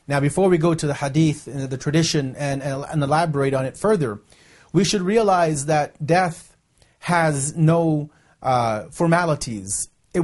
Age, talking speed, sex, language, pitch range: 30-49, 160 wpm, male, English, 155-190 Hz